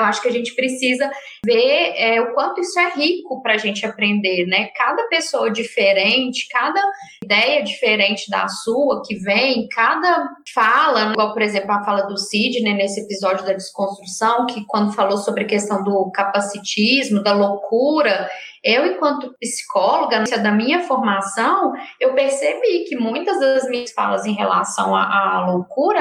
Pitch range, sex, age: 210-275 Hz, female, 10-29